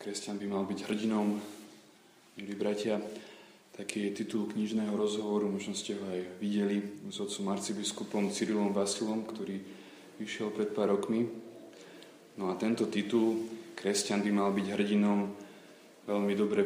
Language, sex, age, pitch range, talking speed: Slovak, male, 20-39, 100-105 Hz, 135 wpm